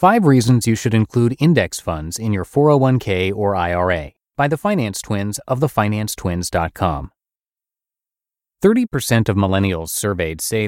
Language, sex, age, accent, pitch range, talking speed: English, male, 30-49, American, 95-130 Hz, 130 wpm